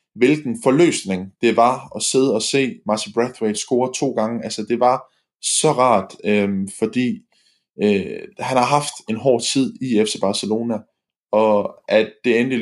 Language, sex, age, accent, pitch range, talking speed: Danish, male, 20-39, native, 105-120 Hz, 160 wpm